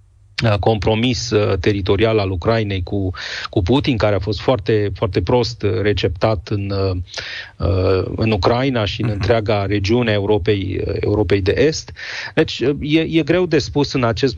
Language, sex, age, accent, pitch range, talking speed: Romanian, male, 30-49, native, 105-135 Hz, 140 wpm